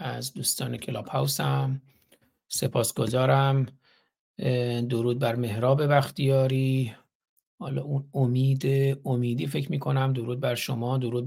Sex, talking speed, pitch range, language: male, 105 wpm, 125-140 Hz, Persian